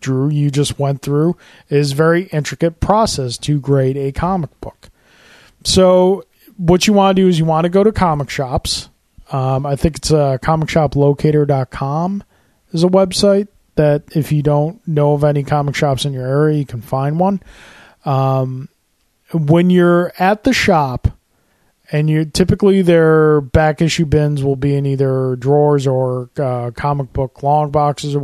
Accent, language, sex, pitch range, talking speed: American, English, male, 140-185 Hz, 170 wpm